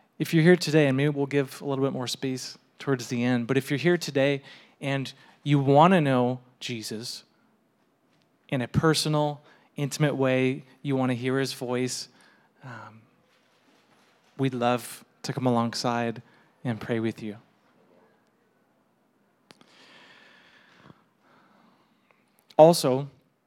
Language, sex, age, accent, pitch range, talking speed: English, male, 30-49, American, 125-150 Hz, 125 wpm